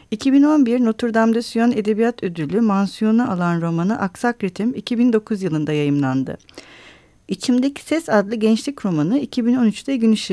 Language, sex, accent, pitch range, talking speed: Turkish, female, native, 180-240 Hz, 130 wpm